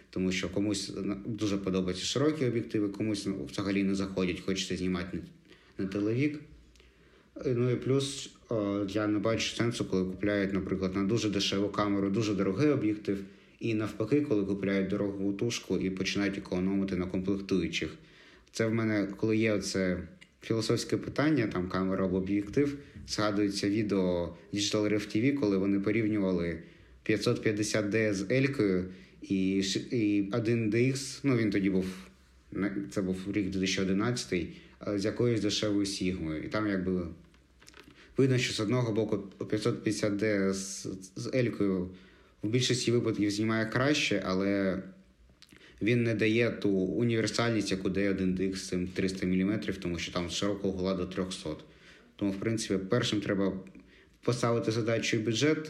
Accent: native